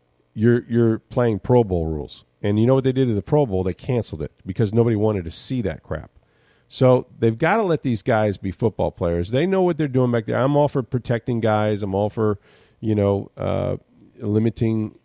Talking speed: 220 wpm